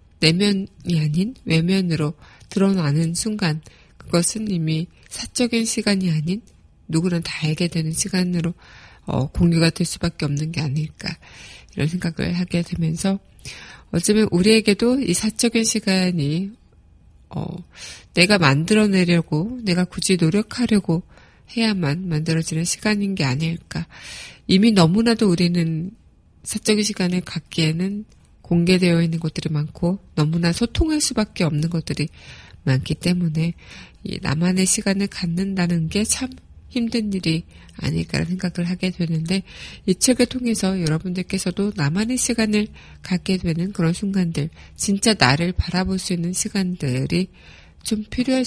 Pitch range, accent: 160-200 Hz, native